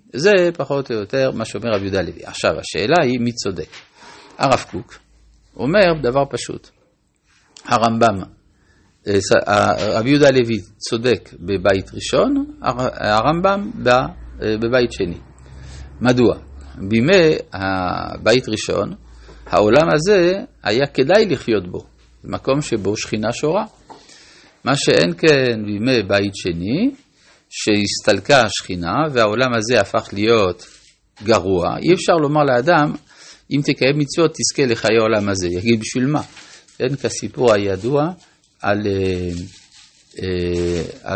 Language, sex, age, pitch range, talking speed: Hebrew, male, 50-69, 100-140 Hz, 110 wpm